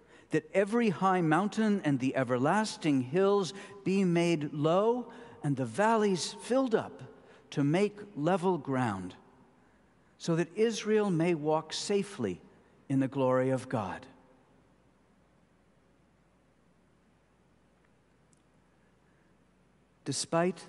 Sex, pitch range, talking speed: male, 130-165 Hz, 95 wpm